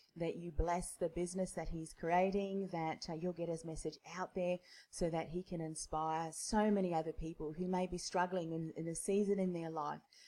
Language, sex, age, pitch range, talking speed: English, female, 30-49, 160-185 Hz, 210 wpm